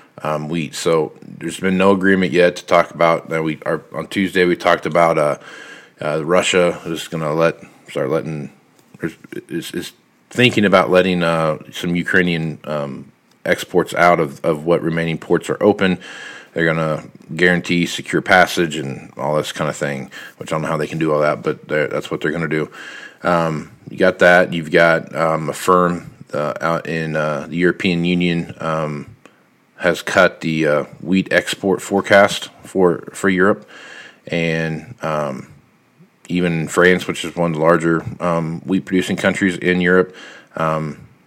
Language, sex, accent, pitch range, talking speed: English, male, American, 80-90 Hz, 175 wpm